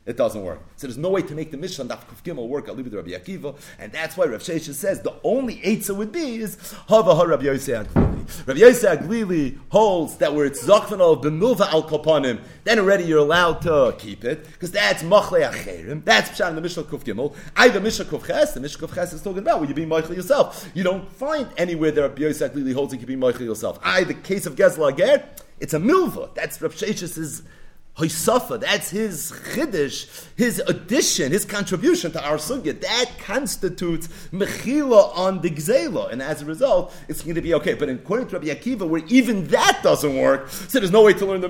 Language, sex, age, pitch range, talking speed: English, male, 40-59, 155-210 Hz, 200 wpm